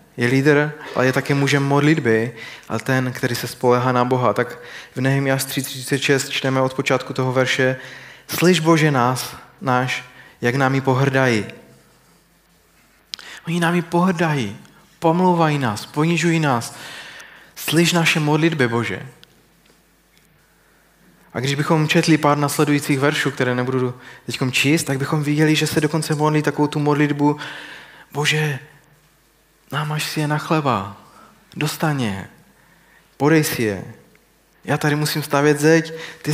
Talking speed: 130 wpm